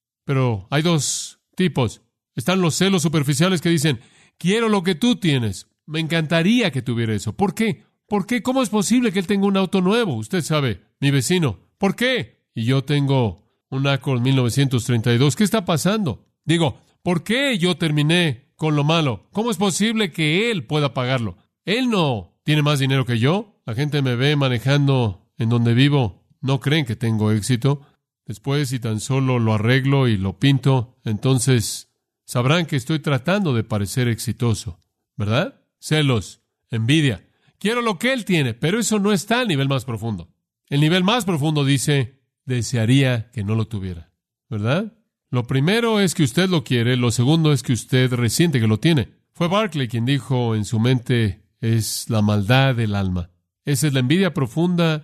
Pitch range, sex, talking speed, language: 120-170 Hz, male, 175 wpm, Spanish